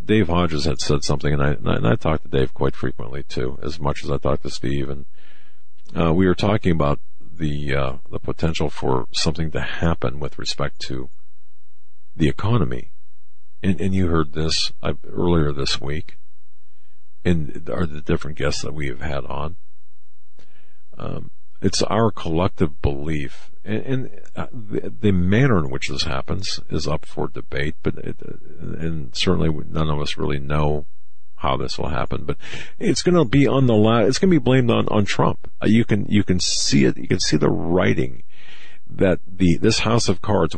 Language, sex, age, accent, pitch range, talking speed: English, male, 50-69, American, 75-100 Hz, 180 wpm